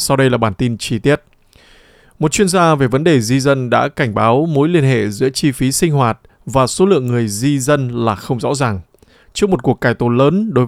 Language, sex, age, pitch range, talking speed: Vietnamese, male, 20-39, 125-155 Hz, 240 wpm